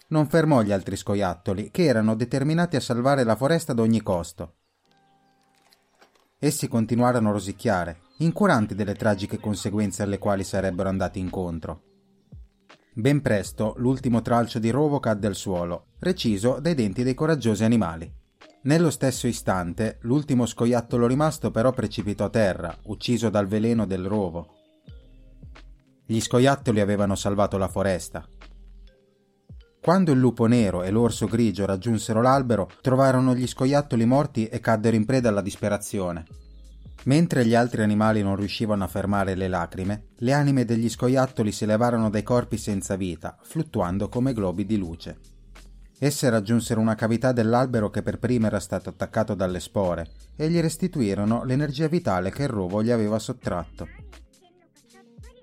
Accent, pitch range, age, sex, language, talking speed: native, 95-125 Hz, 30-49, male, Italian, 145 wpm